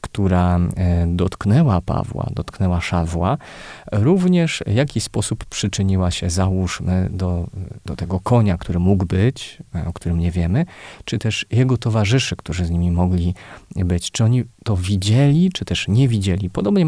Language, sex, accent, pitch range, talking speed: Polish, male, native, 90-110 Hz, 145 wpm